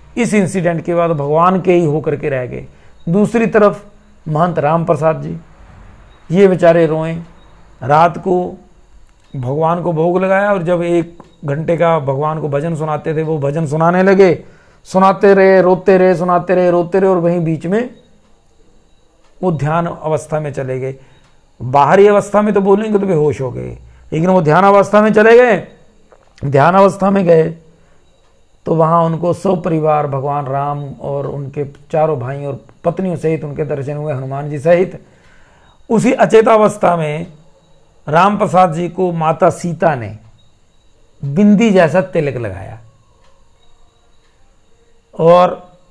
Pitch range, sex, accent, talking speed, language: 145-185 Hz, male, native, 145 wpm, Hindi